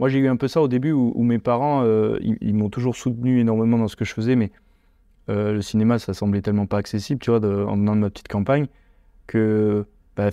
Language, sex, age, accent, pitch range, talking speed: French, male, 20-39, French, 100-115 Hz, 250 wpm